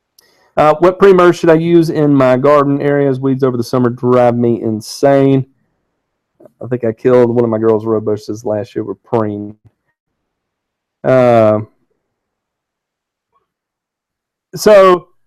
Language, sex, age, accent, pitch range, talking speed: English, male, 40-59, American, 120-160 Hz, 125 wpm